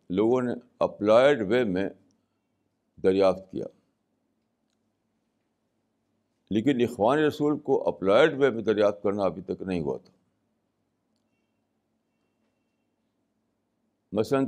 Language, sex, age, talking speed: Urdu, male, 60-79, 90 wpm